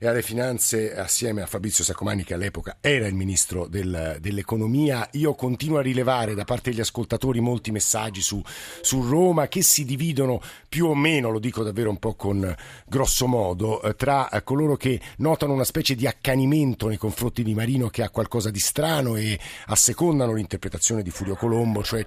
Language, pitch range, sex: Italian, 110-130 Hz, male